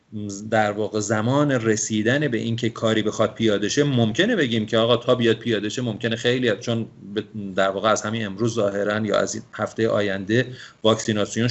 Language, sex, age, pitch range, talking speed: Persian, male, 40-59, 105-130 Hz, 175 wpm